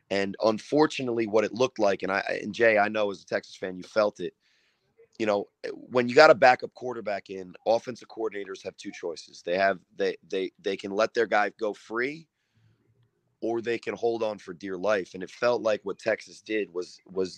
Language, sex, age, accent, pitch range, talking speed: English, male, 30-49, American, 95-120 Hz, 210 wpm